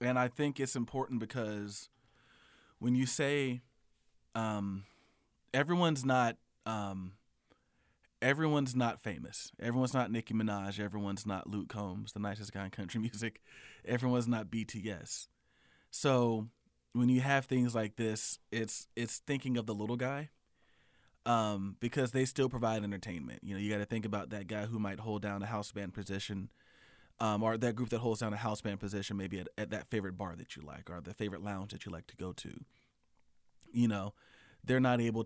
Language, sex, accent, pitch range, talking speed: English, male, American, 100-125 Hz, 175 wpm